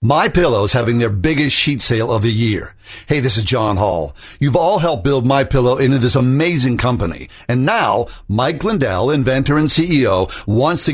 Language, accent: English, American